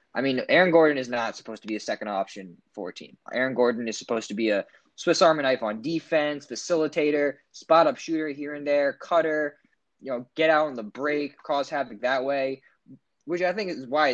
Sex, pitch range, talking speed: male, 115-145 Hz, 210 wpm